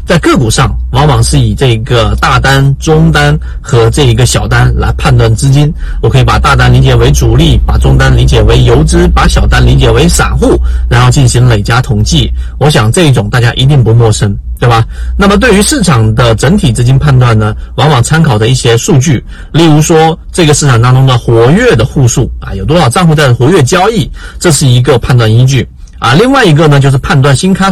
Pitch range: 115-155 Hz